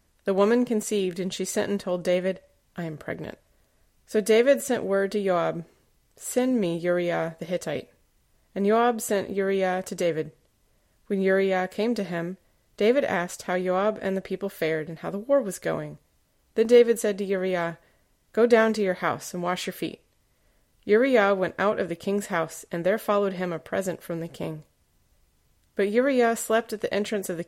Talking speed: 190 wpm